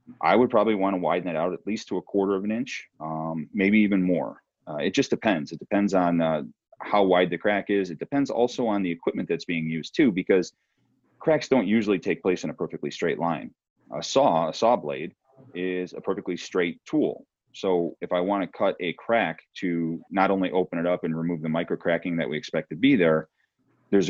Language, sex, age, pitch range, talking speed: English, male, 30-49, 80-100 Hz, 225 wpm